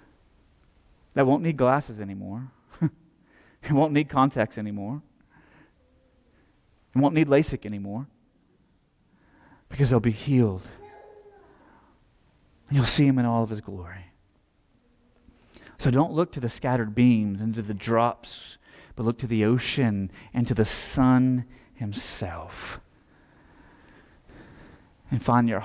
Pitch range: 110-140 Hz